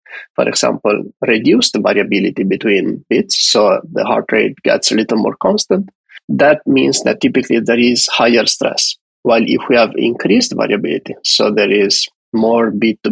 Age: 20-39